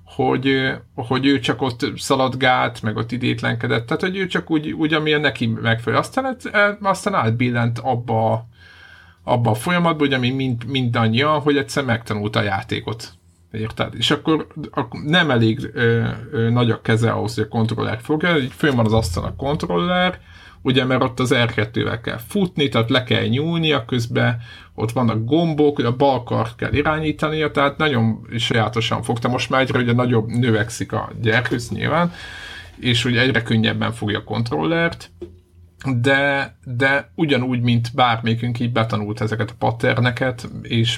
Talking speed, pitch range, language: 150 wpm, 110-140 Hz, Hungarian